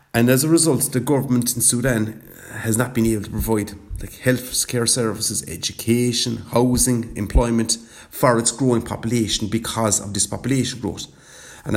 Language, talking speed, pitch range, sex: English, 155 wpm, 110-130 Hz, male